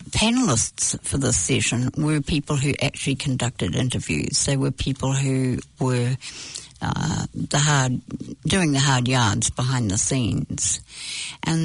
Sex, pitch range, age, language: female, 125-150 Hz, 60-79, English